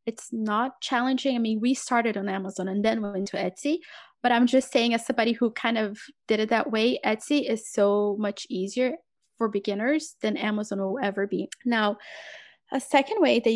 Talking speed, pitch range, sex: 195 wpm, 215-260 Hz, female